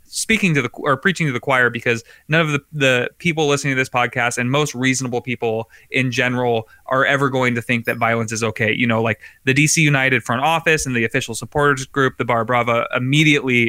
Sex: male